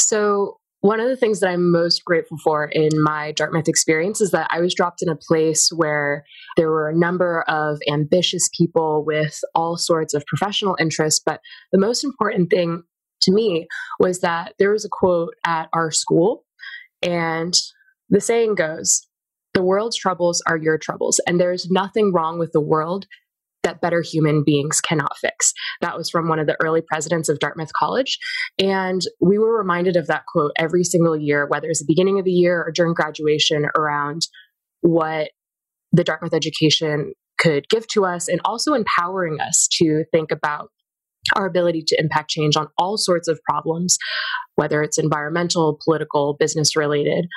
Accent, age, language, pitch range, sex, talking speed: American, 20-39, English, 155-190 Hz, female, 175 wpm